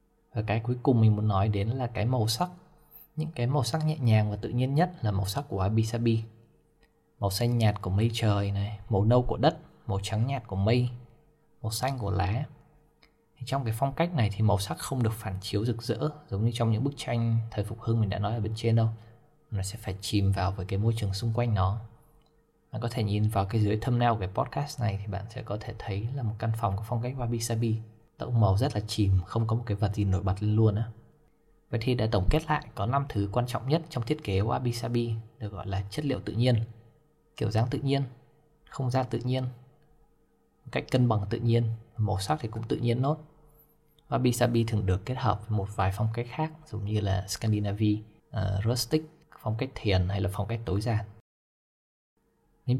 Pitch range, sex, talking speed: 105-130 Hz, male, 235 wpm